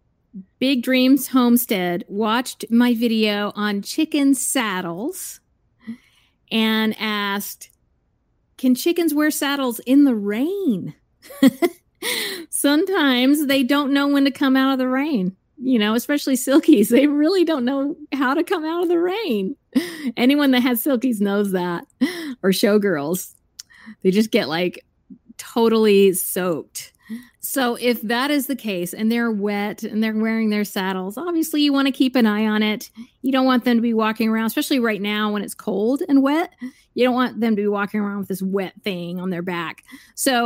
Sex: female